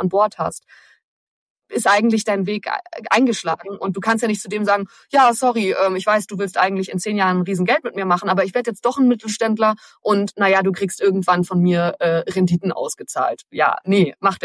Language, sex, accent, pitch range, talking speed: German, female, German, 180-225 Hz, 210 wpm